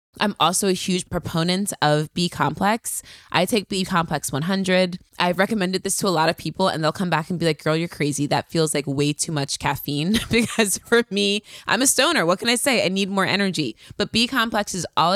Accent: American